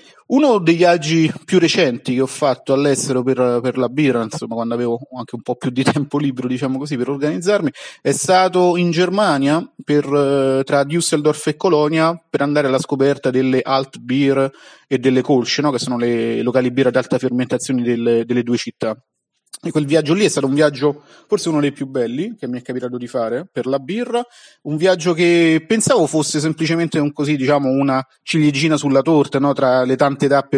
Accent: native